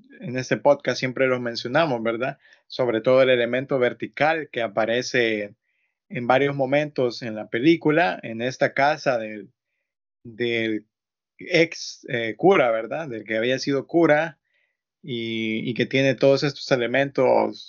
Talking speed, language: 140 wpm, Spanish